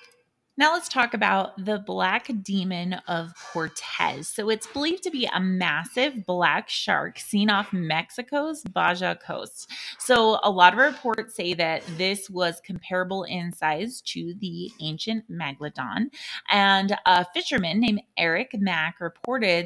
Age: 20-39